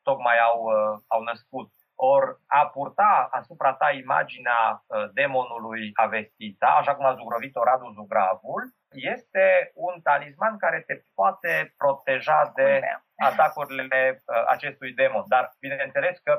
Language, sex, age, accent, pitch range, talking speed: Romanian, male, 30-49, native, 120-160 Hz, 115 wpm